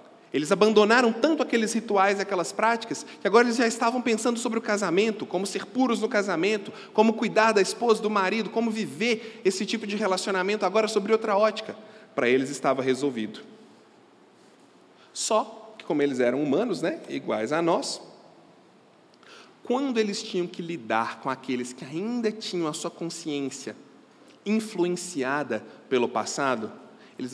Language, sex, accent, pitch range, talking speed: Portuguese, male, Brazilian, 150-225 Hz, 150 wpm